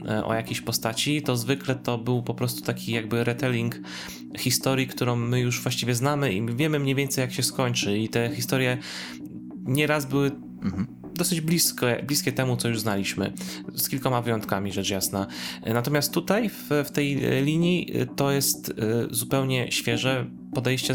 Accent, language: native, Polish